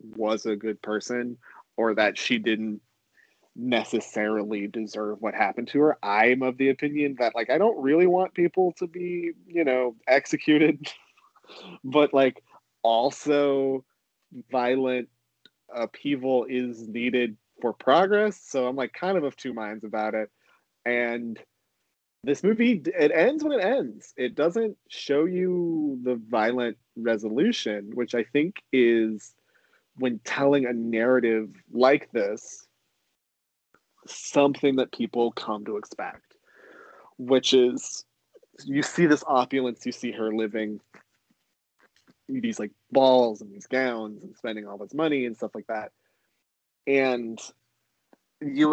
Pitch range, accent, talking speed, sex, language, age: 115-145 Hz, American, 135 wpm, male, English, 30-49